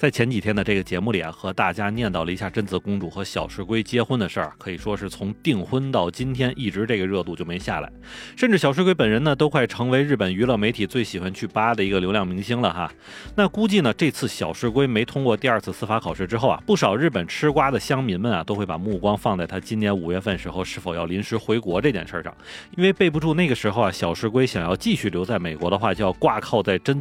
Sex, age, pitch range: male, 30-49, 100-140 Hz